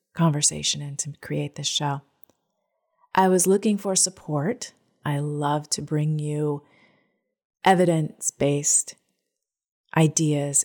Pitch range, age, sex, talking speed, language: 150-205 Hz, 30-49, female, 100 wpm, English